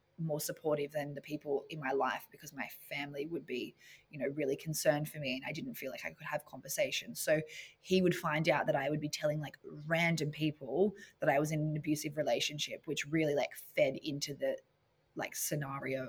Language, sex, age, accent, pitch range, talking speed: English, female, 20-39, Australian, 145-160 Hz, 210 wpm